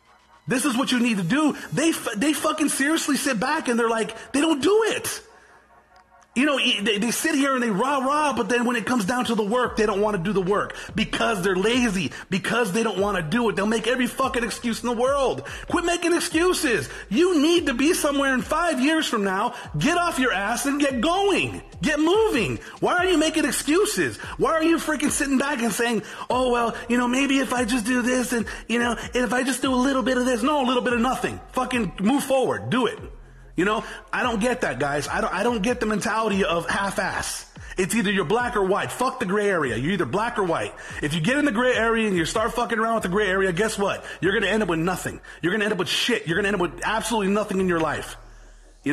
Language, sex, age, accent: English, male, 30-49, American